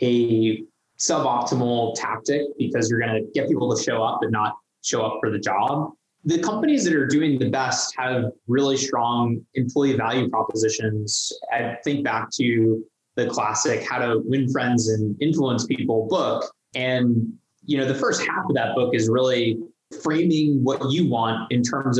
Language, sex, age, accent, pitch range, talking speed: English, male, 20-39, American, 110-130 Hz, 170 wpm